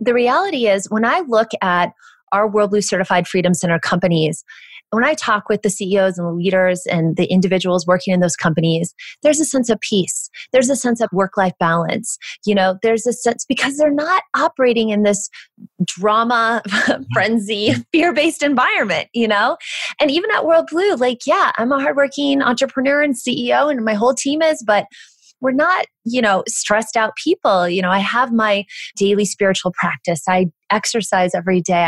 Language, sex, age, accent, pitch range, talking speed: English, female, 20-39, American, 190-260 Hz, 185 wpm